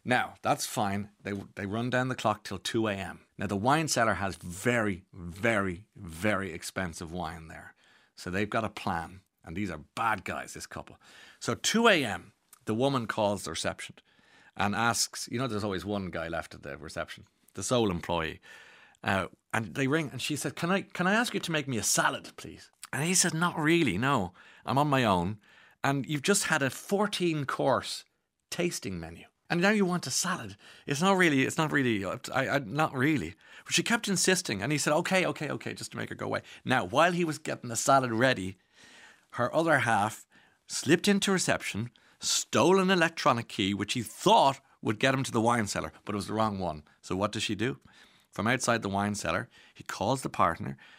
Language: English